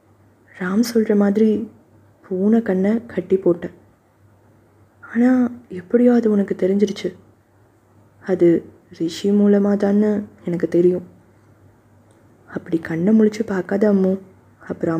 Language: Tamil